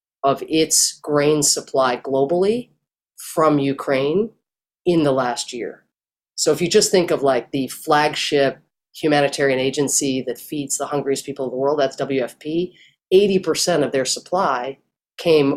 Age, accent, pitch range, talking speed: 30-49, American, 135-170 Hz, 145 wpm